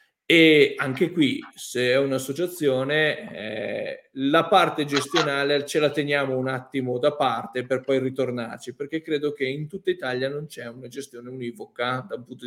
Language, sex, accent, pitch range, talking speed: Italian, male, native, 125-160 Hz, 160 wpm